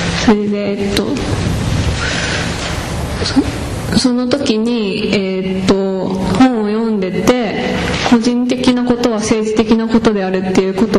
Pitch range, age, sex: 200-230 Hz, 20-39, female